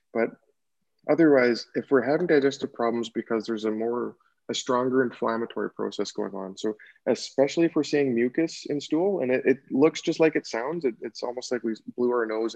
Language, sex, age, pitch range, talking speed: English, male, 20-39, 110-135 Hz, 195 wpm